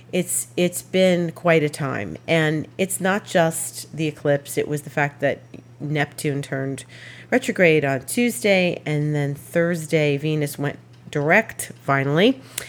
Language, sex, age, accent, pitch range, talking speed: English, female, 40-59, American, 135-170 Hz, 135 wpm